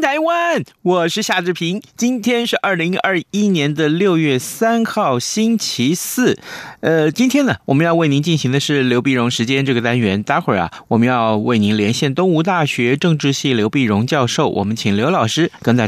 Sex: male